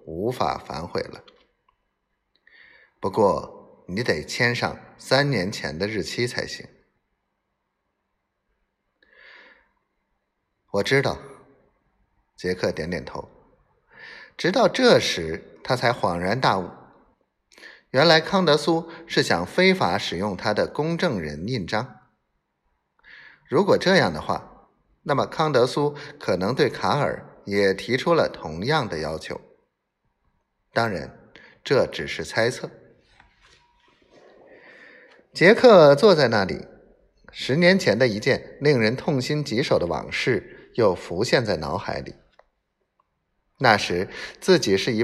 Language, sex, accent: Chinese, male, native